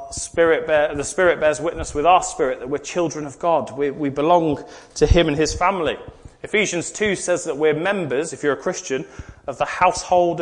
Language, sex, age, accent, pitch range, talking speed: English, male, 30-49, British, 130-170 Hz, 200 wpm